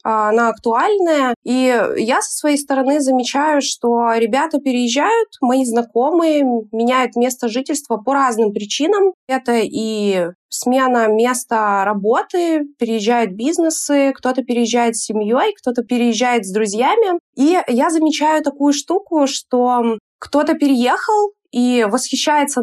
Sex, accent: female, native